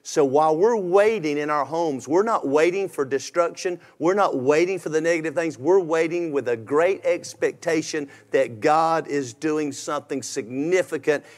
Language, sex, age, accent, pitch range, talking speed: English, male, 50-69, American, 145-205 Hz, 165 wpm